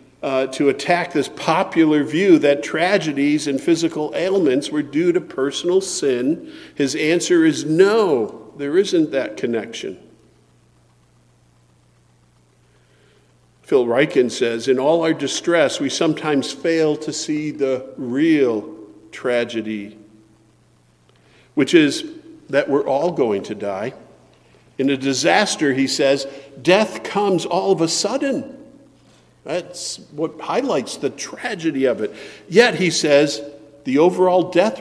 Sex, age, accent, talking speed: male, 50-69, American, 120 wpm